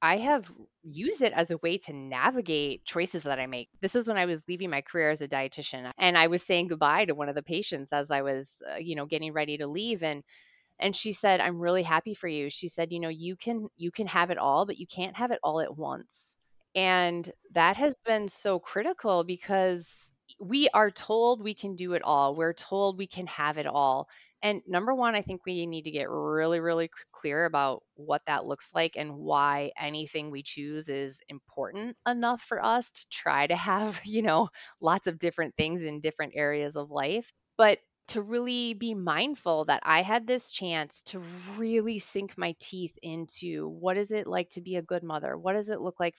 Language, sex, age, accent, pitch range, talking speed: English, female, 20-39, American, 155-215 Hz, 215 wpm